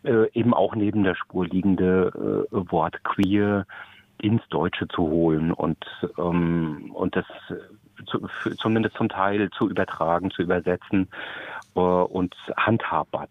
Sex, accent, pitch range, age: male, German, 95-110 Hz, 40-59